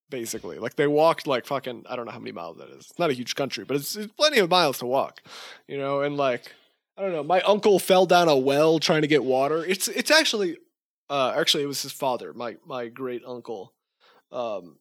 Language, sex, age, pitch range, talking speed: English, male, 20-39, 135-175 Hz, 235 wpm